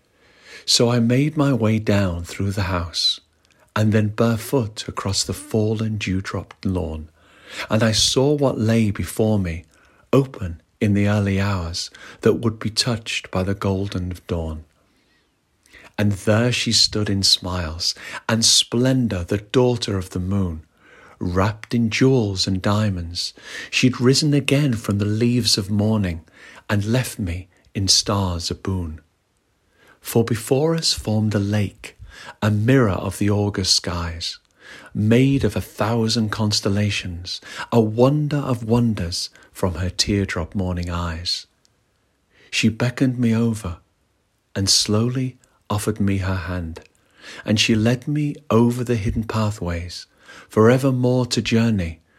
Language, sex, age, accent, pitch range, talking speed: English, male, 50-69, British, 95-115 Hz, 135 wpm